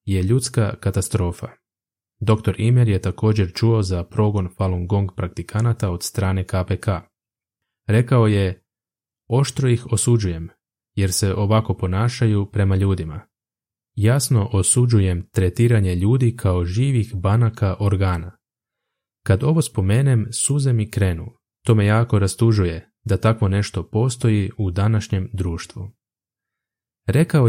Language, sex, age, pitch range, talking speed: Croatian, male, 20-39, 95-115 Hz, 115 wpm